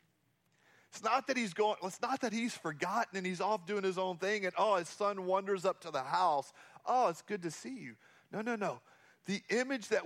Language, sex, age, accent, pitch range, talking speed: English, male, 40-59, American, 165-210 Hz, 225 wpm